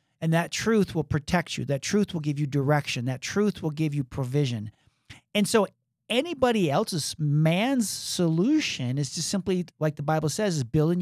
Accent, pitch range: American, 140-180 Hz